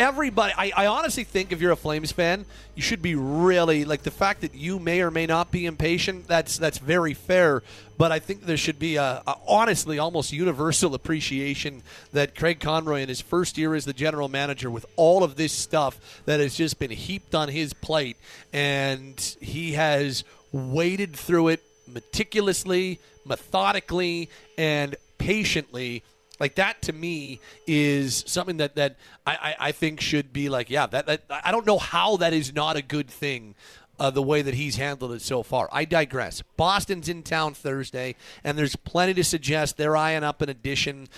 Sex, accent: male, American